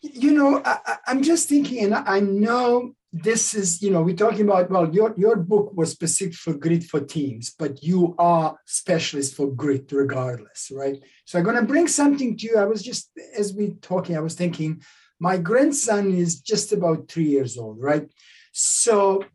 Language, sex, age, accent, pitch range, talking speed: English, male, 60-79, Italian, 165-235 Hz, 190 wpm